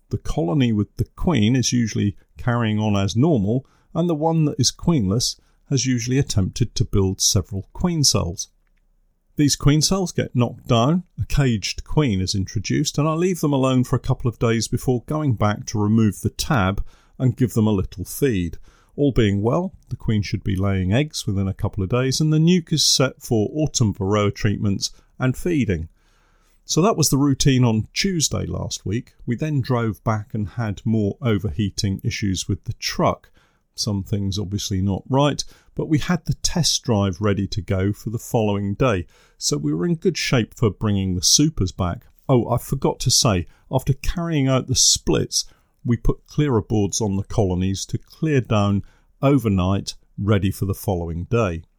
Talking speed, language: 185 wpm, English